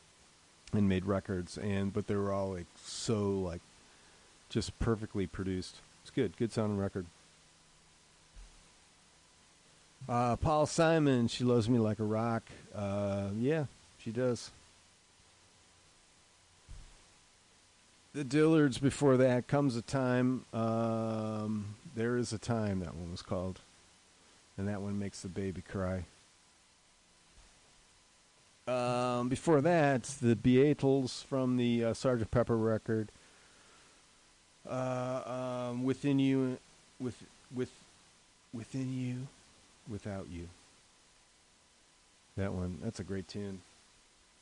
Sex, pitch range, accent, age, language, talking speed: male, 90-120 Hz, American, 40-59, English, 110 wpm